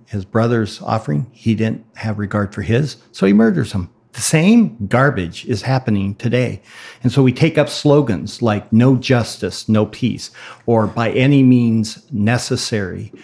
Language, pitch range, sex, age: English, 100-125 Hz, male, 50-69